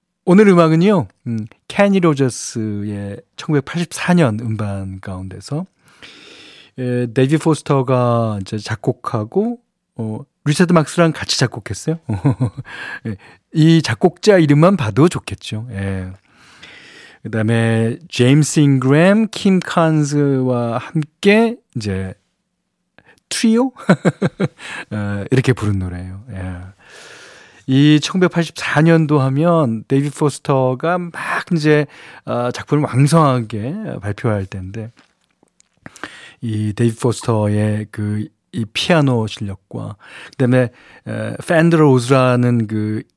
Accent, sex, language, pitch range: native, male, Korean, 115-170 Hz